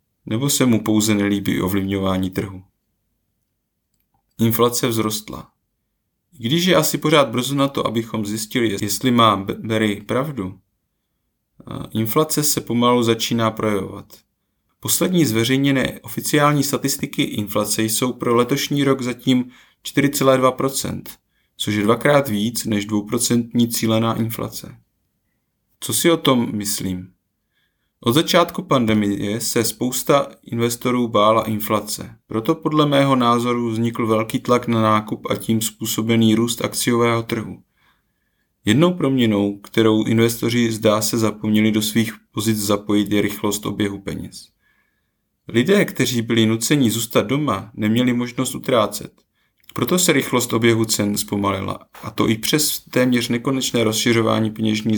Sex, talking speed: male, 125 wpm